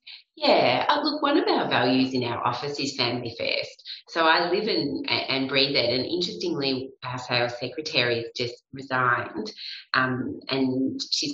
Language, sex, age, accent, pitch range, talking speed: English, female, 30-49, Australian, 130-155 Hz, 165 wpm